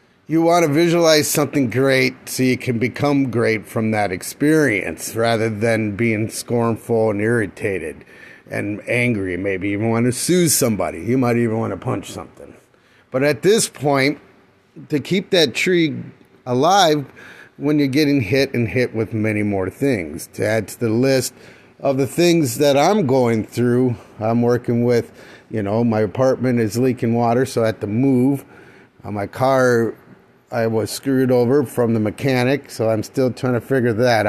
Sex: male